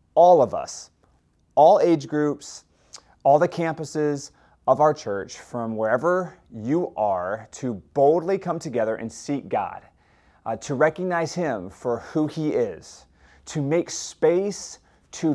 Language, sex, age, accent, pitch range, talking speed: English, male, 30-49, American, 120-160 Hz, 135 wpm